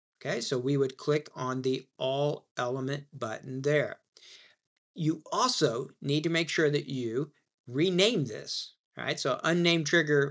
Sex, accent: male, American